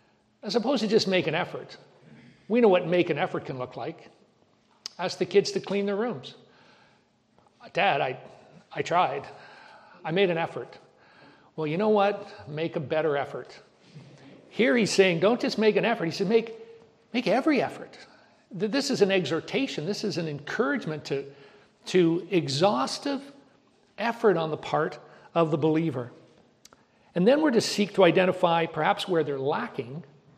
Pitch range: 160-205 Hz